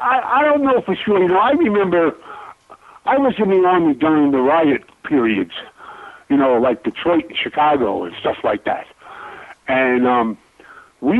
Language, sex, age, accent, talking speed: English, male, 50-69, American, 170 wpm